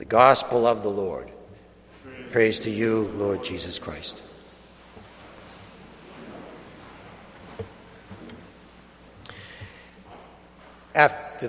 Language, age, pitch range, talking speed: English, 60-79, 105-155 Hz, 65 wpm